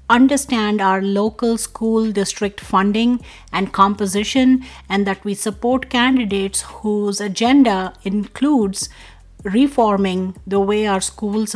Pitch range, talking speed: 190-230 Hz, 110 wpm